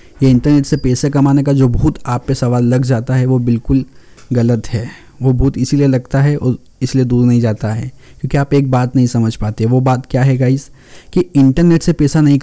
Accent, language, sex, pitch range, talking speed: native, Hindi, male, 125-155 Hz, 220 wpm